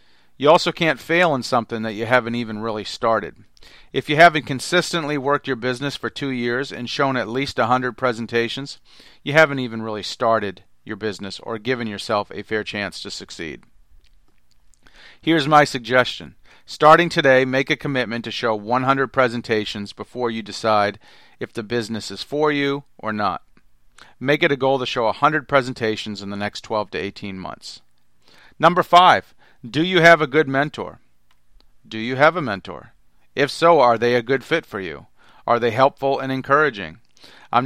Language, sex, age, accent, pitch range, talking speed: English, male, 40-59, American, 110-145 Hz, 175 wpm